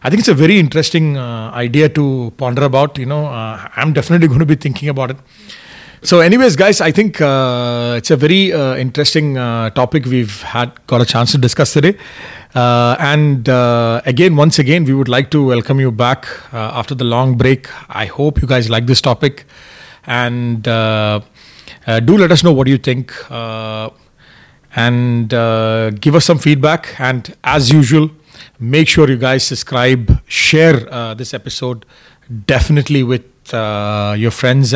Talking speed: 175 wpm